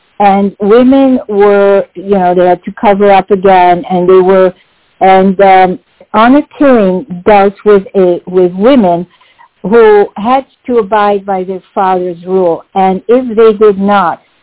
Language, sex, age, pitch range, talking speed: English, female, 50-69, 185-230 Hz, 150 wpm